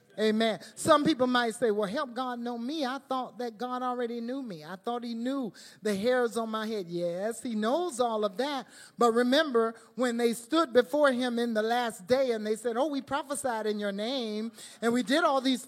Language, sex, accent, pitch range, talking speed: English, male, American, 220-275 Hz, 220 wpm